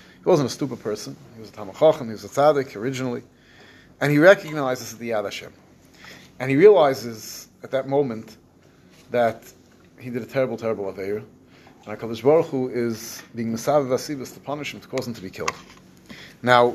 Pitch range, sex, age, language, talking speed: 115-145 Hz, male, 30-49, English, 195 wpm